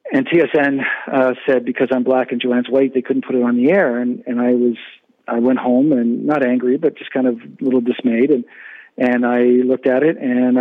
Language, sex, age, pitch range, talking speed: English, male, 40-59, 125-140 Hz, 230 wpm